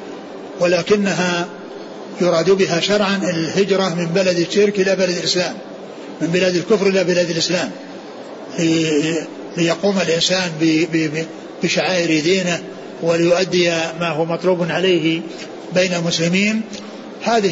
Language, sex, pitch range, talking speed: Arabic, male, 170-195 Hz, 100 wpm